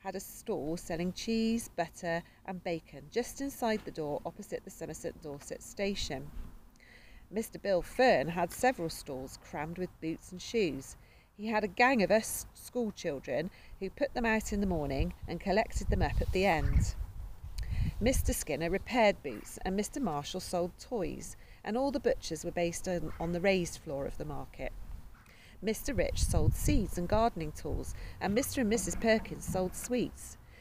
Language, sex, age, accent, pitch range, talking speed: English, female, 40-59, British, 155-215 Hz, 170 wpm